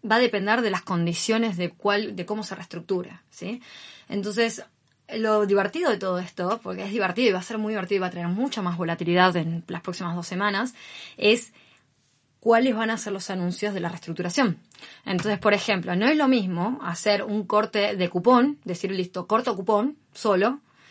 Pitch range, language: 180-220 Hz, Spanish